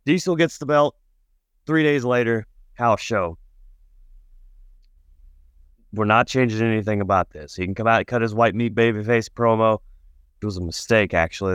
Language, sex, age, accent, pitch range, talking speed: English, male, 20-39, American, 85-120 Hz, 160 wpm